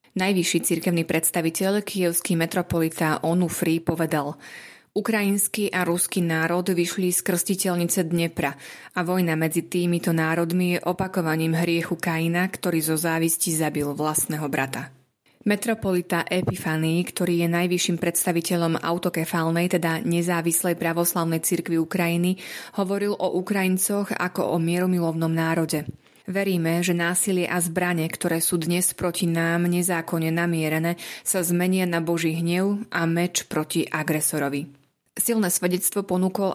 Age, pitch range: 30-49, 165-185 Hz